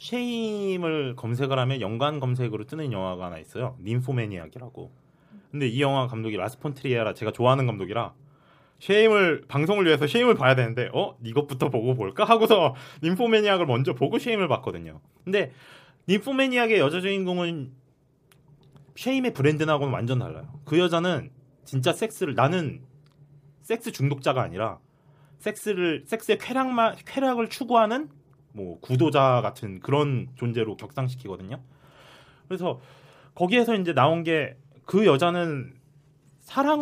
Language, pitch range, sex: Korean, 125-170 Hz, male